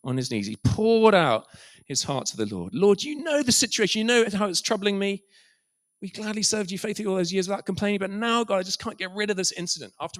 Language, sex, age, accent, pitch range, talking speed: English, male, 40-59, British, 120-200 Hz, 260 wpm